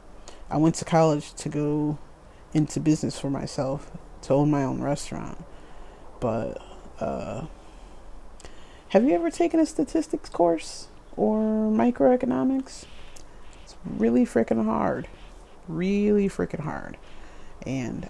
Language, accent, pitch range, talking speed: English, American, 145-170 Hz, 115 wpm